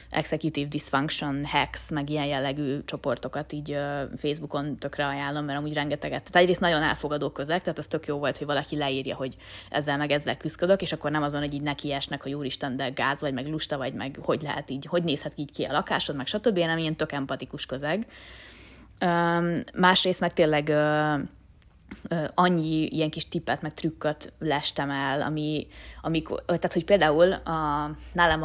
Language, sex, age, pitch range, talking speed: Hungarian, female, 20-39, 140-165 Hz, 170 wpm